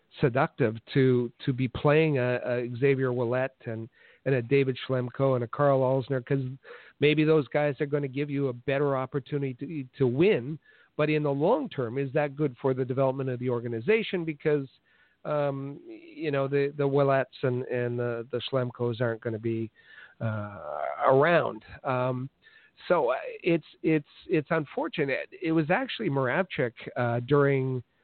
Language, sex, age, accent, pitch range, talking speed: English, male, 50-69, American, 125-150 Hz, 165 wpm